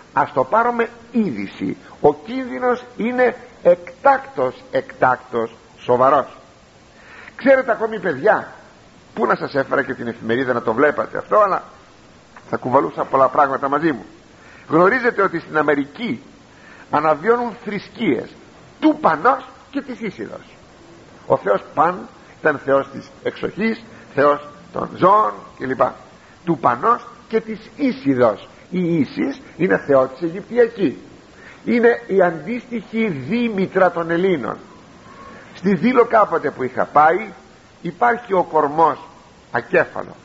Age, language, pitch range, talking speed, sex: 50-69, Greek, 155-235 Hz, 120 wpm, male